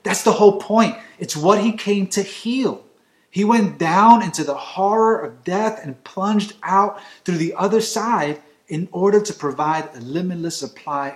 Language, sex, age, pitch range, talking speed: English, male, 30-49, 165-220 Hz, 170 wpm